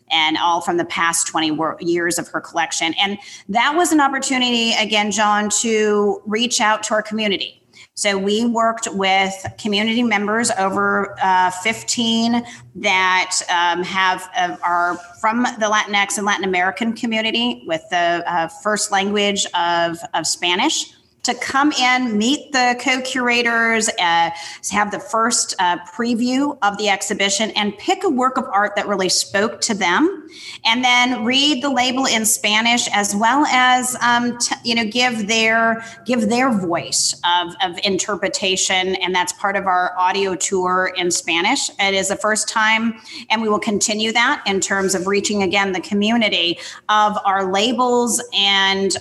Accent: American